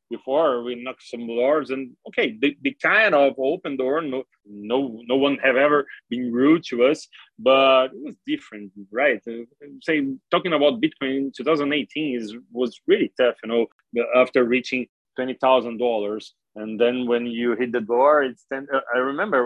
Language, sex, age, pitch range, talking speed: English, male, 30-49, 120-145 Hz, 175 wpm